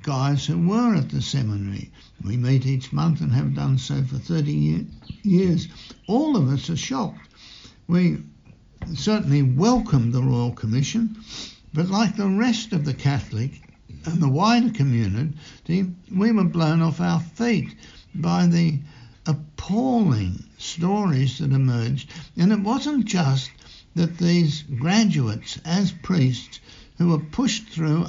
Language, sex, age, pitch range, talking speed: English, male, 60-79, 135-190 Hz, 135 wpm